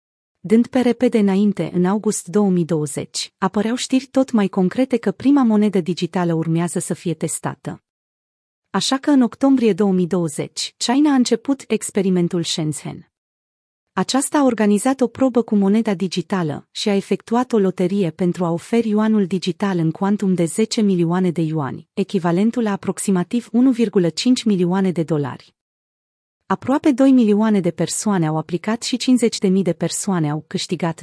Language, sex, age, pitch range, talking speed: Romanian, female, 30-49, 175-220 Hz, 145 wpm